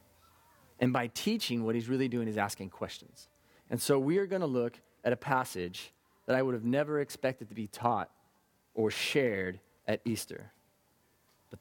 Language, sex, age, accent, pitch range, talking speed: English, male, 30-49, American, 115-145 Hz, 175 wpm